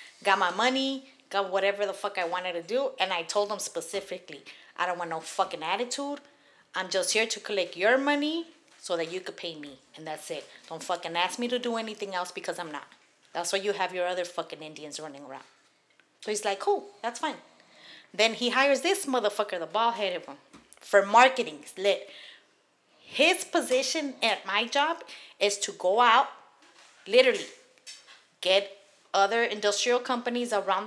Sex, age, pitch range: female, 30-49, 185-245 Hz